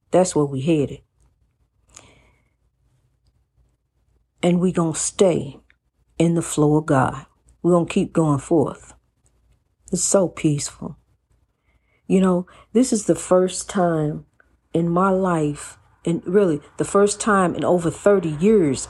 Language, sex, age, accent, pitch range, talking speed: English, female, 50-69, American, 150-180 Hz, 135 wpm